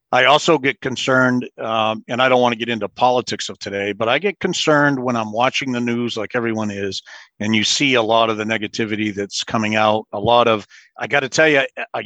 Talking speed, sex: 235 wpm, male